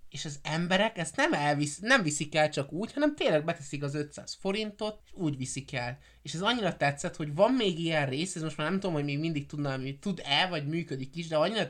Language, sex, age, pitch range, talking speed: Hungarian, male, 20-39, 135-170 Hz, 225 wpm